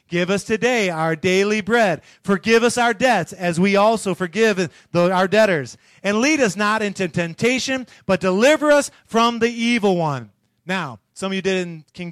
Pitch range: 140-205 Hz